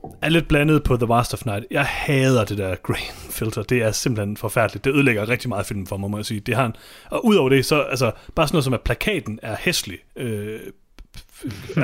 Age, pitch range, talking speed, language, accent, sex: 30-49, 115-155 Hz, 235 wpm, Danish, native, male